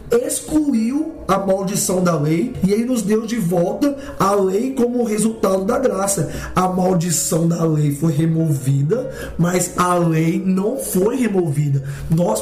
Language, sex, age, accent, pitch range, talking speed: Portuguese, male, 20-39, Brazilian, 170-210 Hz, 145 wpm